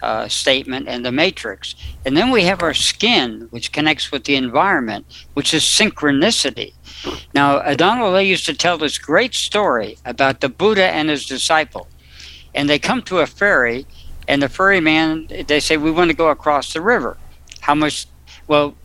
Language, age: English, 60-79